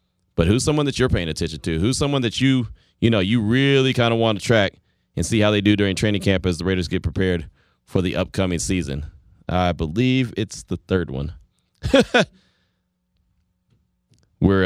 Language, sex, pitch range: English, male, 80-105 Hz